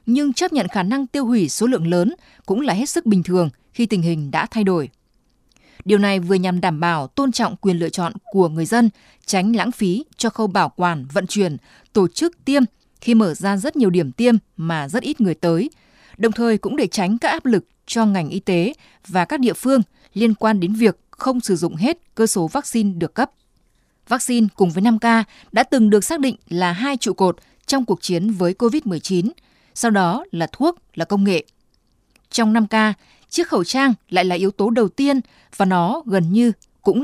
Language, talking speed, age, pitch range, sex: Vietnamese, 210 wpm, 20-39, 180-240 Hz, female